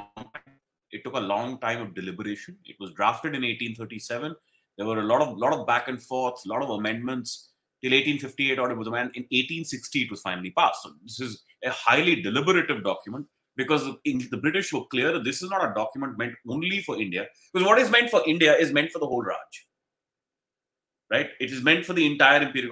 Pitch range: 125-180 Hz